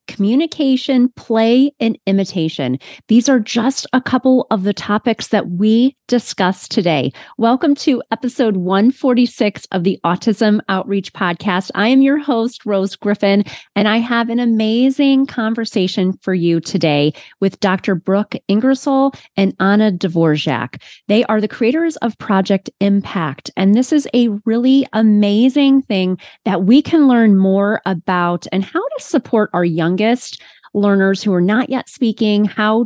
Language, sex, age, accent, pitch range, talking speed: English, female, 30-49, American, 180-230 Hz, 145 wpm